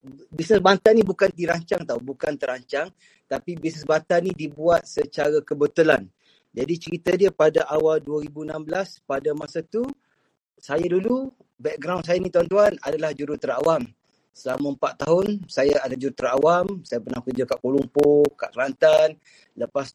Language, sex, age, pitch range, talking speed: Malay, male, 30-49, 140-175 Hz, 145 wpm